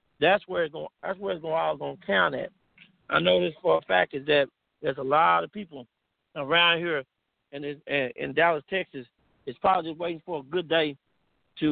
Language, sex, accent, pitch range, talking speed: English, male, American, 145-180 Hz, 220 wpm